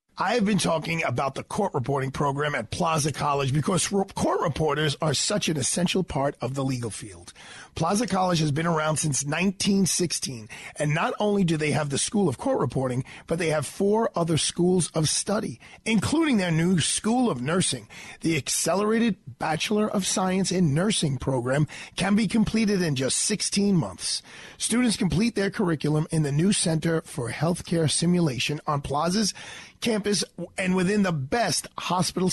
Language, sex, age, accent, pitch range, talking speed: English, male, 40-59, American, 150-200 Hz, 165 wpm